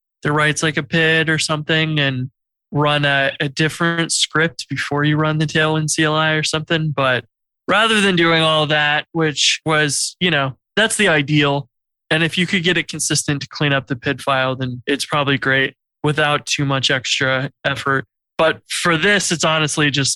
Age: 20-39